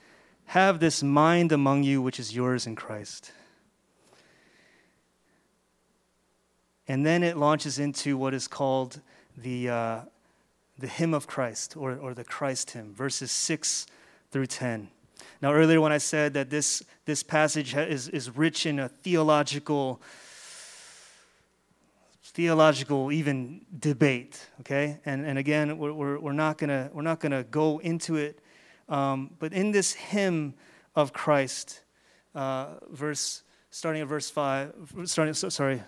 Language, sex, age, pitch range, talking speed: English, male, 30-49, 135-160 Hz, 135 wpm